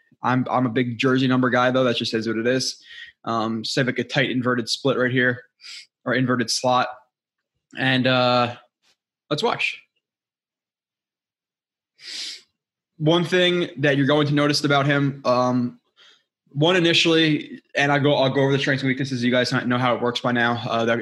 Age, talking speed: 20-39, 175 wpm